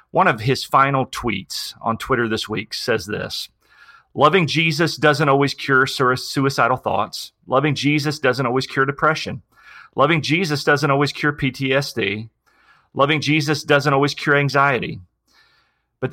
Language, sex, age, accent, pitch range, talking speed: English, male, 30-49, American, 115-145 Hz, 140 wpm